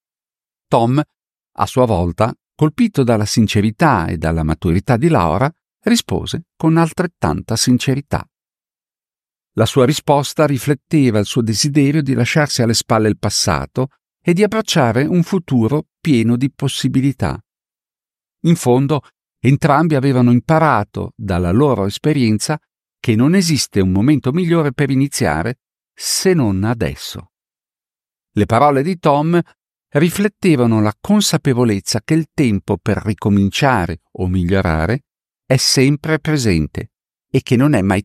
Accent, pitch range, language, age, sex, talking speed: native, 110-155 Hz, Italian, 50-69, male, 125 wpm